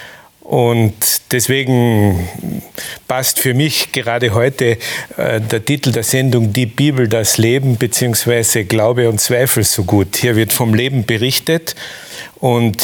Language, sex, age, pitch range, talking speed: German, male, 50-69, 115-130 Hz, 130 wpm